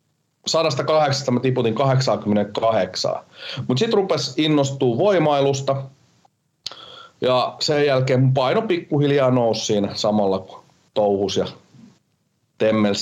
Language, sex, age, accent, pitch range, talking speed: Finnish, male, 30-49, native, 120-155 Hz, 95 wpm